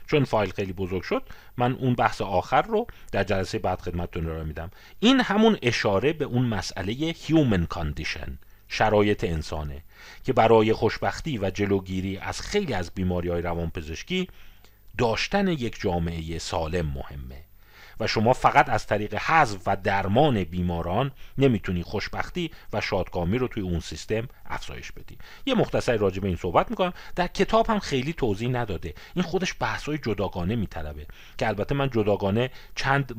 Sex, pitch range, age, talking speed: male, 90-125 Hz, 40-59, 150 wpm